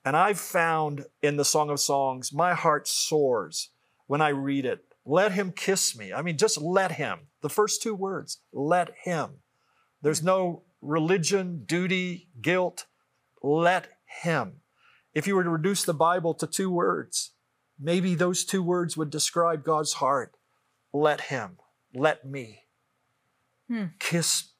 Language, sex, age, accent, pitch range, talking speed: English, male, 50-69, American, 145-180 Hz, 145 wpm